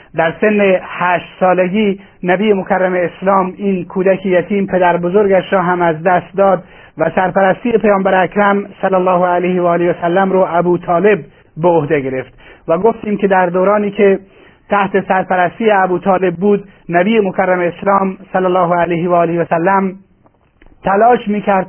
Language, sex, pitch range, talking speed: Persian, male, 180-200 Hz, 160 wpm